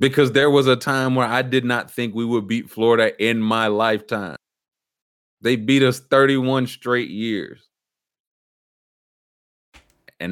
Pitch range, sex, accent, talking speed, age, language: 105-145 Hz, male, American, 140 wpm, 30-49, English